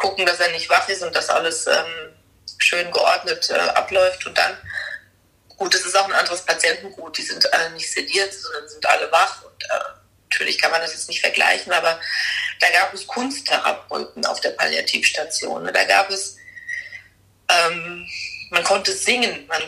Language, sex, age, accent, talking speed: German, female, 30-49, German, 180 wpm